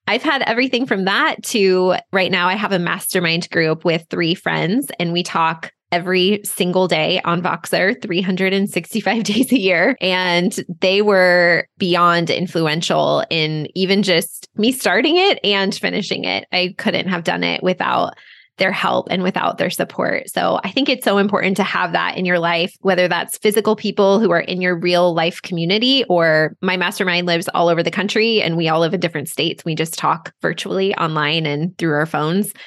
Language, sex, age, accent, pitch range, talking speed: English, female, 20-39, American, 175-205 Hz, 185 wpm